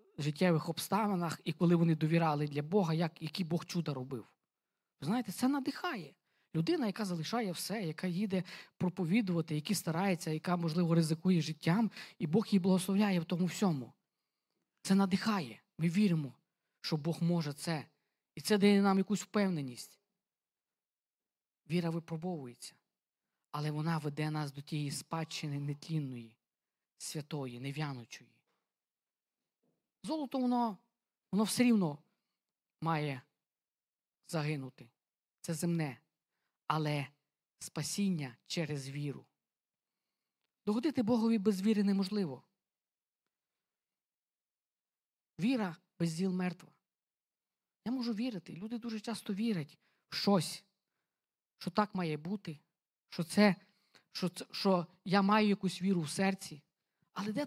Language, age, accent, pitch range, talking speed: Ukrainian, 20-39, native, 155-205 Hz, 115 wpm